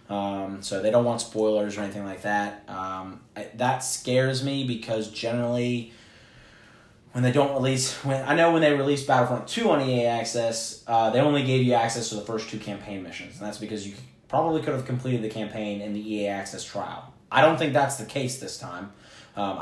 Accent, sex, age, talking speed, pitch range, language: American, male, 20-39, 210 wpm, 105-125 Hz, English